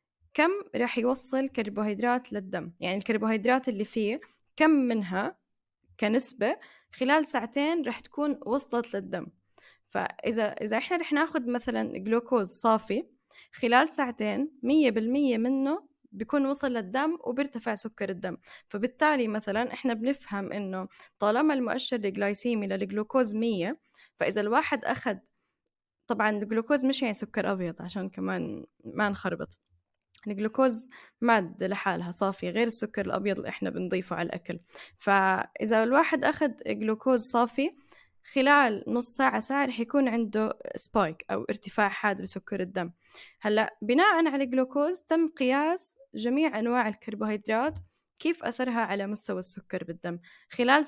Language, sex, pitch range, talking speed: Arabic, female, 210-280 Hz, 125 wpm